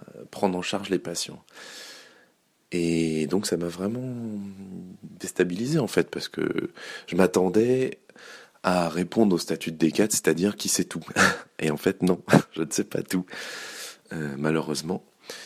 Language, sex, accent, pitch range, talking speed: French, male, French, 75-95 Hz, 150 wpm